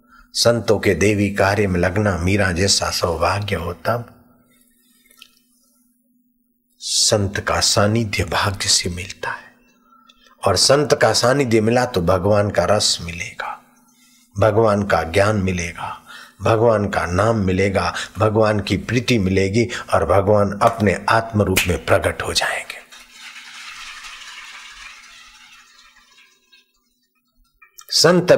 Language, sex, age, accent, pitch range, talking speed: Hindi, male, 60-79, native, 100-150 Hz, 105 wpm